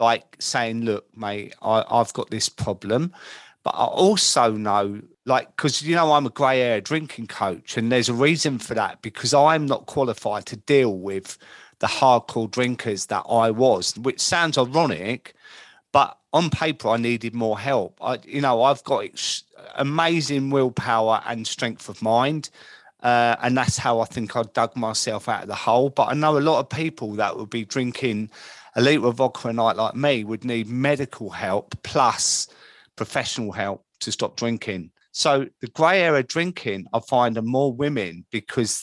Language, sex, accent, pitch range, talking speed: English, male, British, 115-140 Hz, 180 wpm